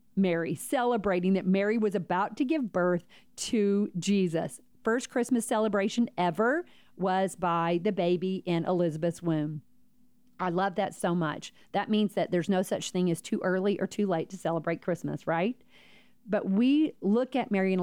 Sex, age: female, 40-59